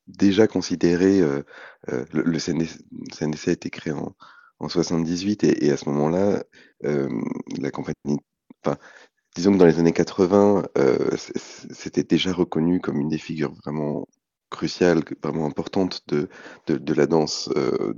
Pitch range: 80-95 Hz